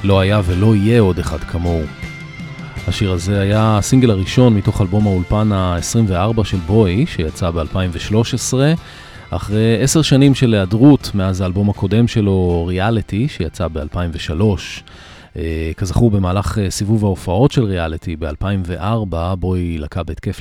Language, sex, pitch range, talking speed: Hebrew, male, 90-115 Hz, 125 wpm